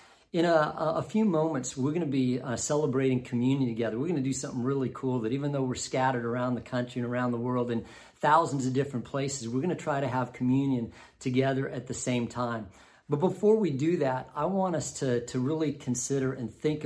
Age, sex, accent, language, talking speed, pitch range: 40-59, male, American, English, 225 wpm, 120-145 Hz